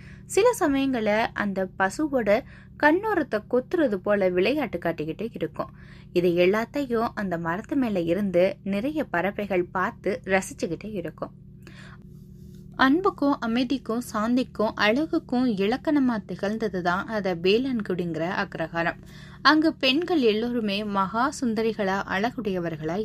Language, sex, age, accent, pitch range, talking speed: Tamil, female, 20-39, native, 180-245 Hz, 85 wpm